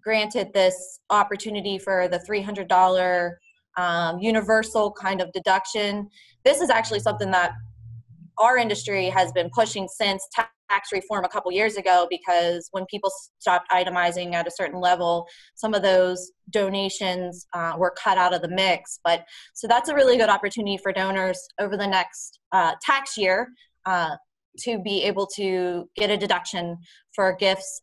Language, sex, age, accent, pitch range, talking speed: English, female, 20-39, American, 185-215 Hz, 155 wpm